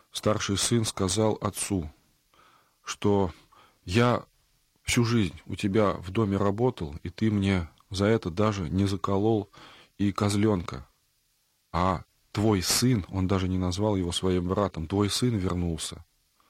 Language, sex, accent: Russian, male, native